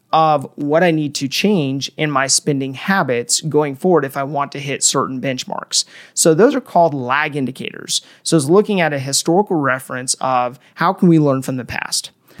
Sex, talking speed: male, 195 wpm